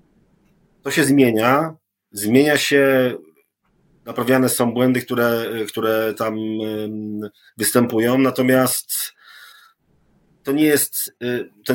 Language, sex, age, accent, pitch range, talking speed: Polish, male, 30-49, native, 110-125 Hz, 70 wpm